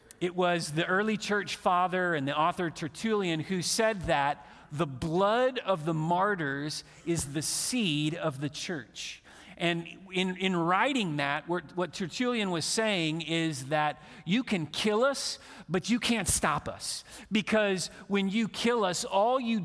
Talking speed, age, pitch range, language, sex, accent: 155 wpm, 40-59, 140-195 Hz, English, male, American